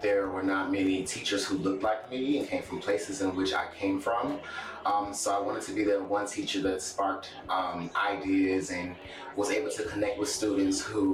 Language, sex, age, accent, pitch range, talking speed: English, male, 30-49, American, 100-145 Hz, 210 wpm